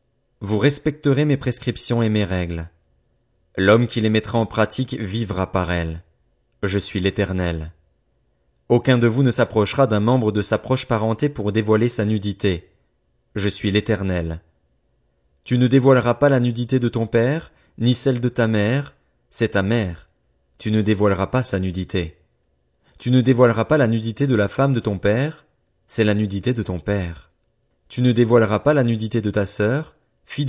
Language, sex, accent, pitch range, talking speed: French, male, French, 100-120 Hz, 175 wpm